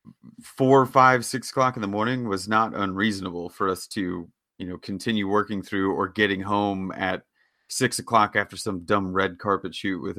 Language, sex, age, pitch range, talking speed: English, male, 30-49, 100-130 Hz, 185 wpm